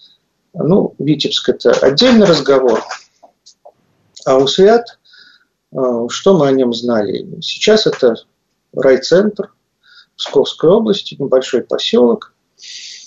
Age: 40-59